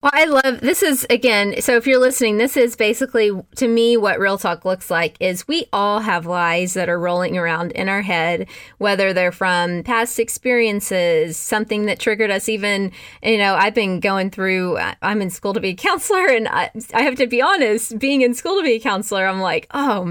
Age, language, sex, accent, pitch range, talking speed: 20-39, English, female, American, 185-240 Hz, 215 wpm